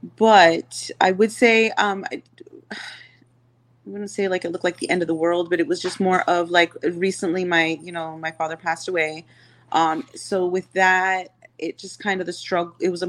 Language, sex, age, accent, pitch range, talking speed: English, female, 30-49, American, 165-190 Hz, 205 wpm